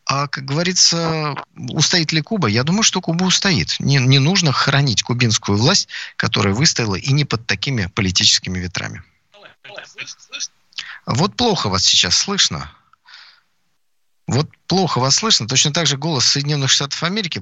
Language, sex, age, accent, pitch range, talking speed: Russian, male, 40-59, native, 120-175 Hz, 140 wpm